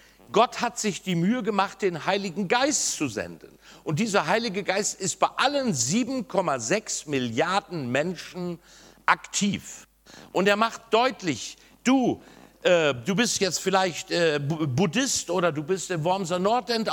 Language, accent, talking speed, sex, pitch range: German, German, 140 wpm, male, 165-220 Hz